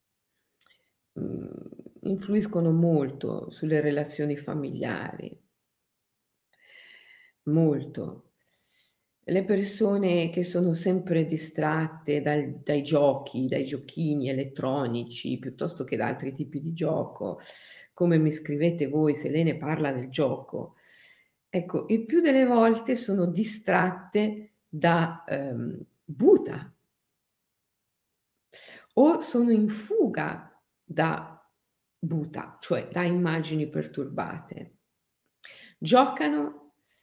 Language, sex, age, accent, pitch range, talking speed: Italian, female, 50-69, native, 150-225 Hz, 90 wpm